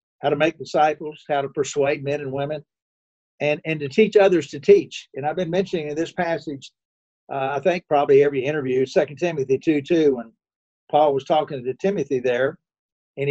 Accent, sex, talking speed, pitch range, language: American, male, 190 wpm, 140-175 Hz, English